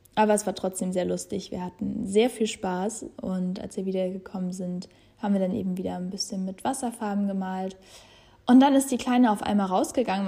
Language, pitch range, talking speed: German, 185-215 Hz, 200 wpm